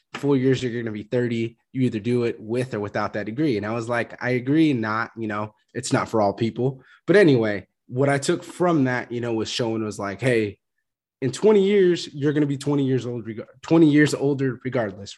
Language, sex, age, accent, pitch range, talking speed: English, male, 20-39, American, 110-135 Hz, 230 wpm